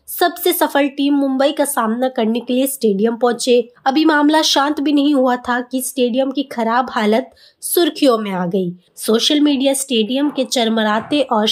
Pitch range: 235-280 Hz